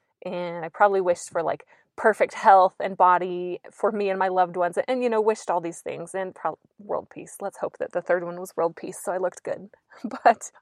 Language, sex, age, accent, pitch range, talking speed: English, female, 20-39, American, 180-220 Hz, 225 wpm